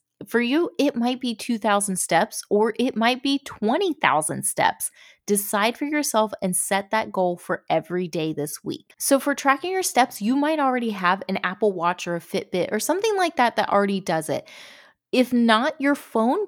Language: English